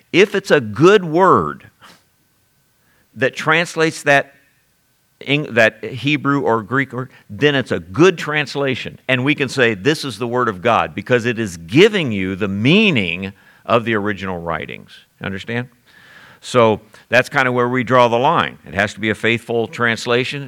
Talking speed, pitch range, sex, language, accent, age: 165 wpm, 105-130 Hz, male, English, American, 50-69